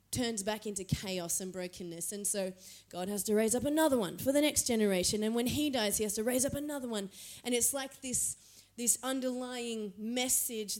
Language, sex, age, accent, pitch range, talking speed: English, female, 30-49, Australian, 215-265 Hz, 205 wpm